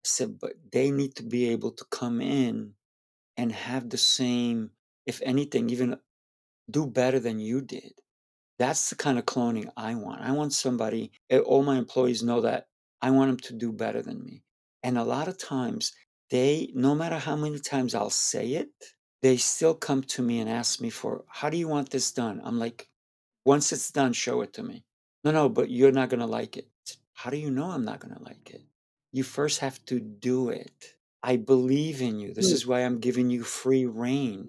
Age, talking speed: 50-69, 210 wpm